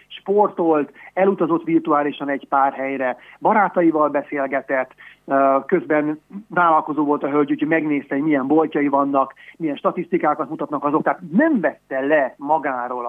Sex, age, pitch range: male, 30-49, 140-195 Hz